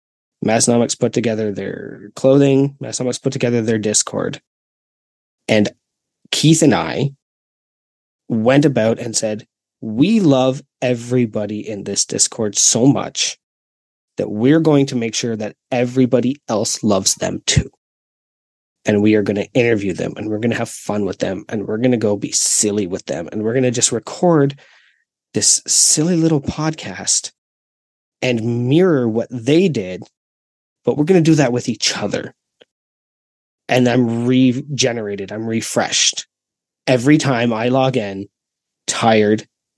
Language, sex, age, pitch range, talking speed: English, male, 20-39, 110-135 Hz, 145 wpm